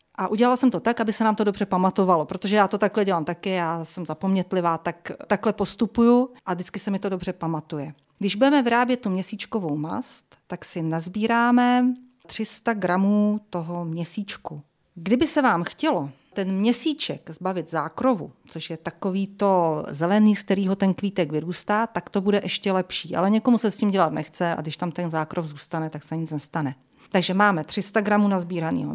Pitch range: 170-220 Hz